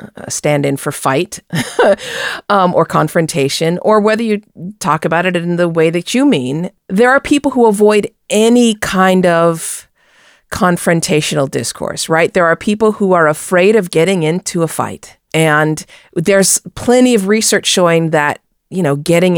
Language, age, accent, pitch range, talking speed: English, 40-59, American, 165-225 Hz, 160 wpm